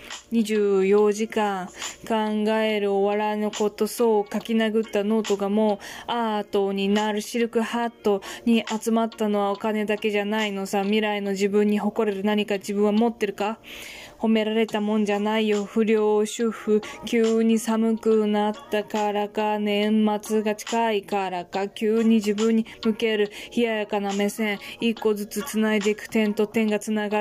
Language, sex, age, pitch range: Japanese, female, 20-39, 205-225 Hz